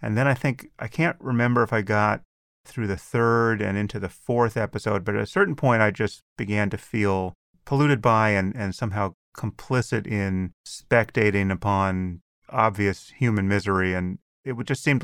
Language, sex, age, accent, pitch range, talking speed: English, male, 30-49, American, 95-120 Hz, 175 wpm